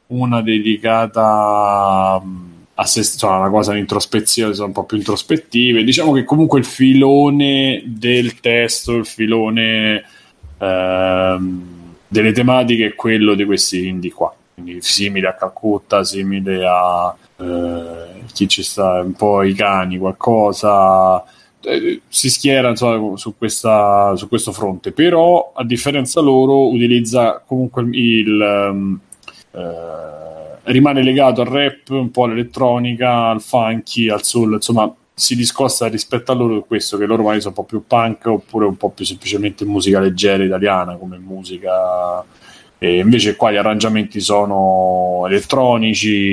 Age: 20-39